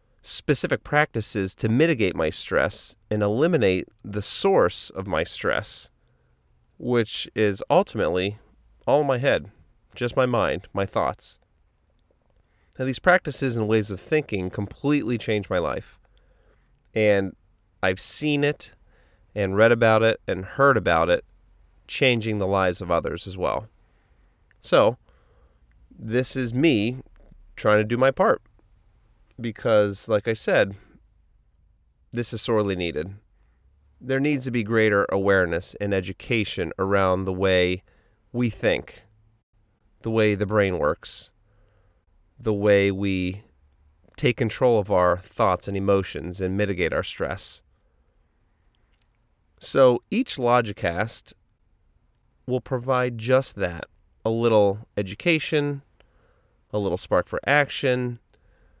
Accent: American